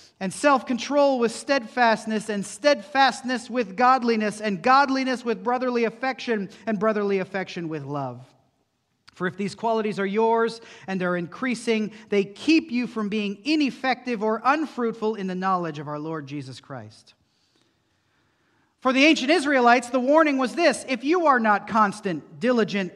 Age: 40-59